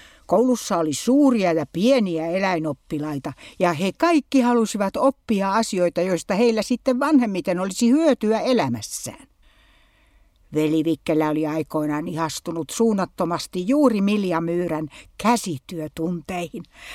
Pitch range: 170-255 Hz